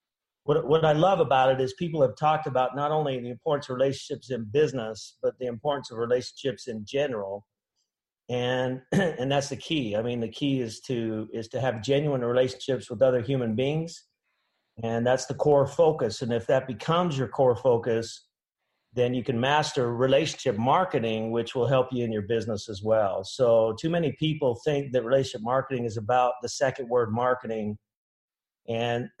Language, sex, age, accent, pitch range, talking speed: English, male, 50-69, American, 120-145 Hz, 180 wpm